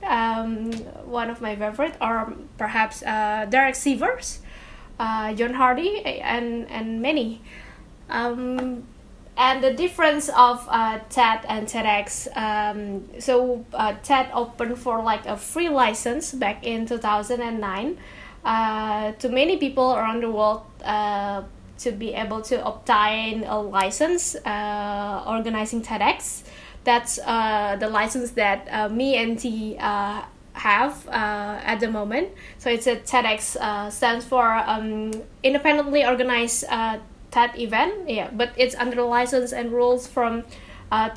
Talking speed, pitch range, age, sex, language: 135 wpm, 215-260 Hz, 10-29, female, English